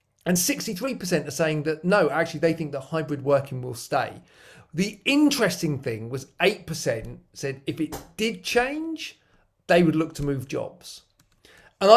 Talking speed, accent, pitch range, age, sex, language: 155 wpm, British, 140-170 Hz, 40-59, male, English